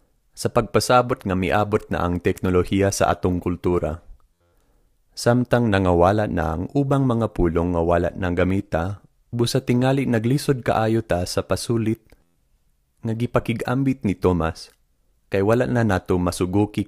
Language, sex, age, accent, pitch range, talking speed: Filipino, male, 20-39, native, 90-120 Hz, 130 wpm